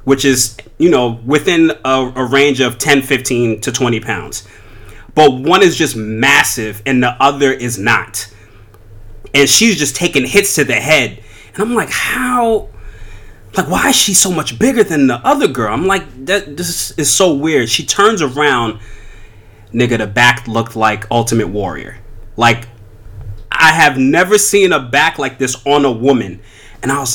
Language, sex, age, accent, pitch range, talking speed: English, male, 30-49, American, 105-140 Hz, 175 wpm